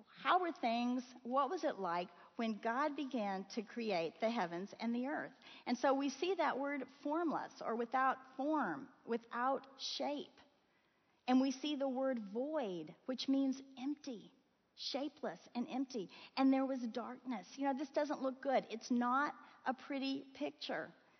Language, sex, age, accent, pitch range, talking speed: English, female, 40-59, American, 225-280 Hz, 160 wpm